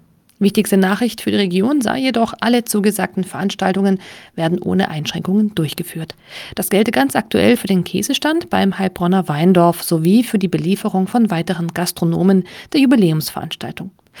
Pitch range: 175-225 Hz